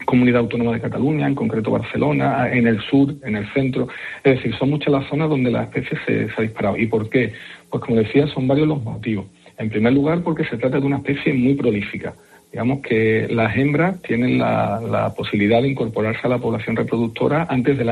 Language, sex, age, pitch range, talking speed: Spanish, male, 50-69, 115-135 Hz, 210 wpm